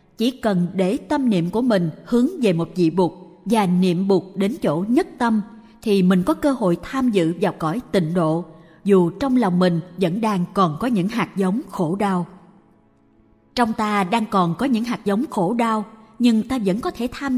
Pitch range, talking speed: 180-230 Hz, 205 wpm